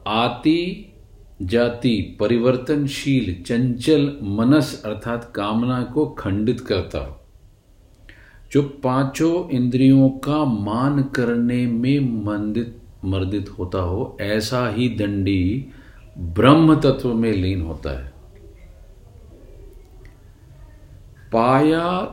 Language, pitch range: Hindi, 100-130 Hz